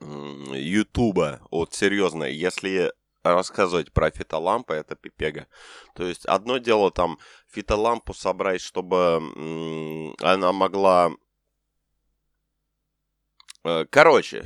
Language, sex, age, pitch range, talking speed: Ukrainian, male, 20-39, 85-110 Hz, 85 wpm